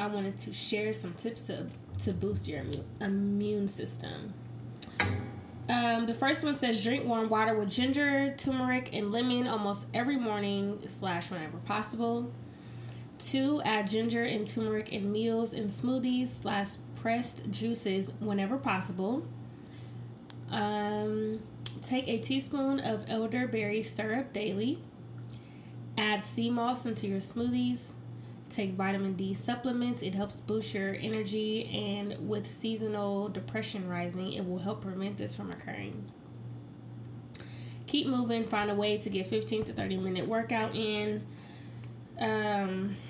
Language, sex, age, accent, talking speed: English, female, 20-39, American, 130 wpm